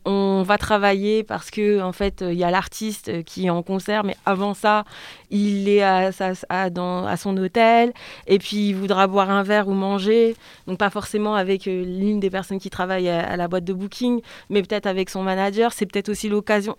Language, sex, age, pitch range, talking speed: French, female, 20-39, 185-215 Hz, 220 wpm